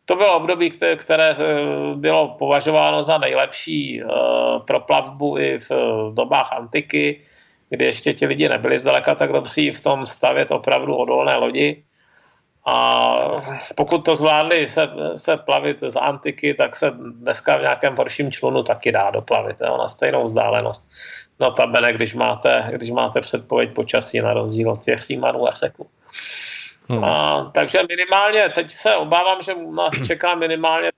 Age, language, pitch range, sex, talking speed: 30-49, Czech, 115-170 Hz, male, 145 wpm